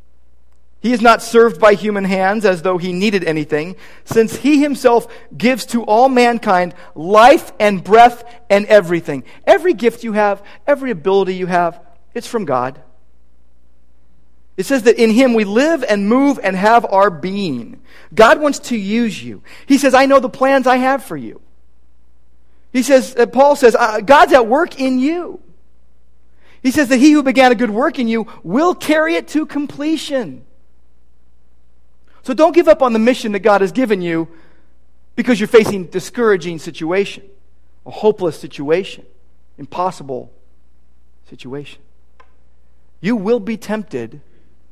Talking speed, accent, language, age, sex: 155 wpm, American, English, 40-59, male